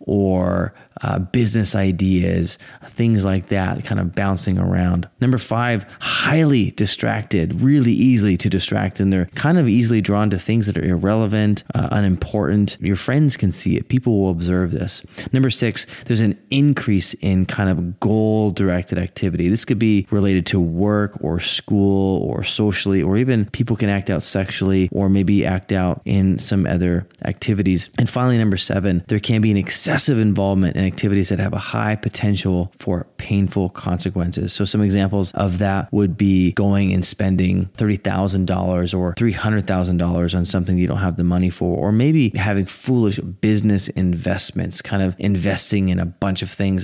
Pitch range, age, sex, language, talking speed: 95-110 Hz, 20-39, male, English, 175 wpm